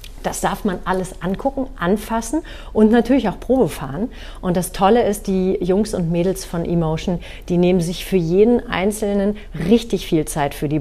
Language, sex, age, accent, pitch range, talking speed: German, female, 40-59, German, 160-215 Hz, 170 wpm